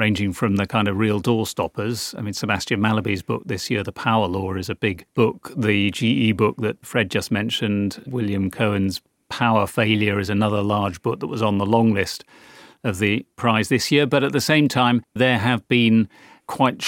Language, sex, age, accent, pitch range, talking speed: English, male, 40-59, British, 105-120 Hz, 205 wpm